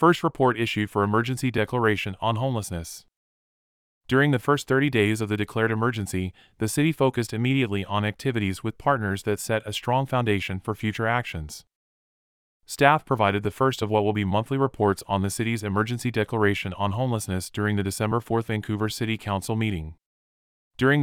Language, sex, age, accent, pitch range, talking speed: English, male, 30-49, American, 100-120 Hz, 170 wpm